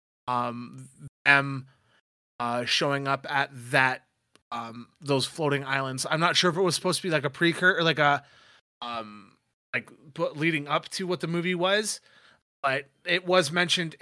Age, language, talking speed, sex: 20-39, English, 165 wpm, male